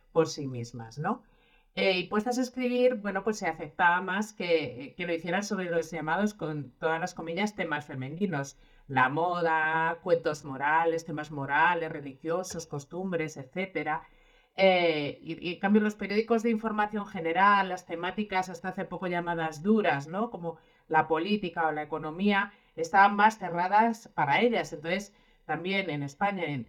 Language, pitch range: Spanish, 165-220 Hz